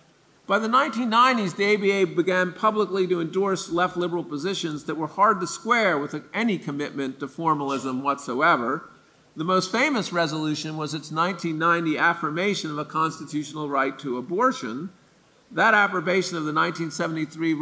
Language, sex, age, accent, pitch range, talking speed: English, male, 50-69, American, 150-185 Hz, 145 wpm